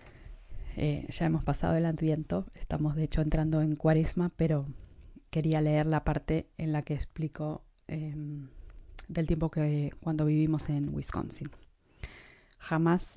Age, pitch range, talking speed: 20-39, 150-165 Hz, 135 wpm